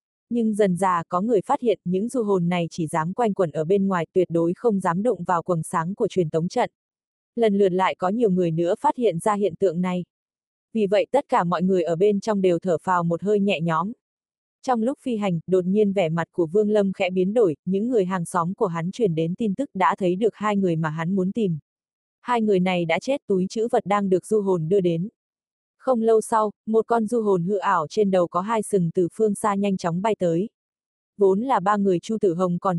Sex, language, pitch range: female, Vietnamese, 180-220 Hz